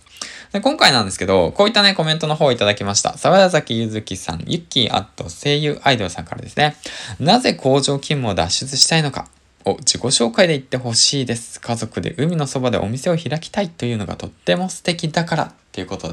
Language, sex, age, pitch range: Japanese, male, 20-39, 95-150 Hz